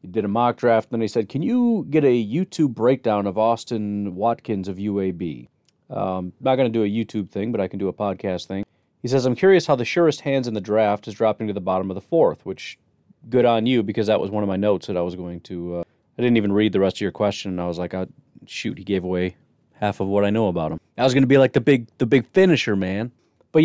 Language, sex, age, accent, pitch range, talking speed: English, male, 30-49, American, 105-140 Hz, 275 wpm